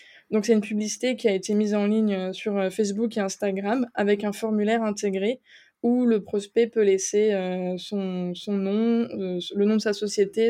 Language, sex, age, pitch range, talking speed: French, female, 20-39, 200-225 Hz, 175 wpm